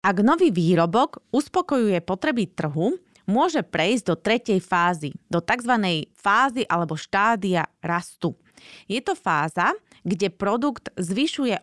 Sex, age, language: female, 30-49, Slovak